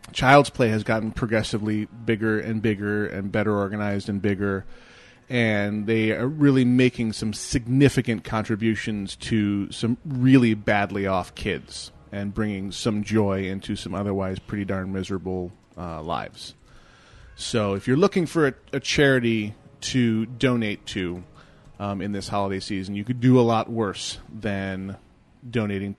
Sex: male